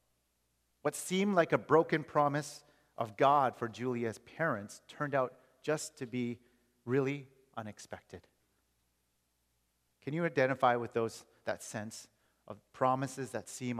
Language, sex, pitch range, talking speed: English, male, 100-140 Hz, 125 wpm